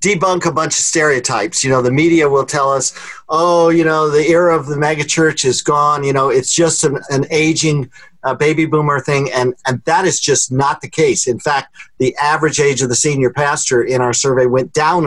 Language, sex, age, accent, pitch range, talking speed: English, male, 50-69, American, 135-175 Hz, 225 wpm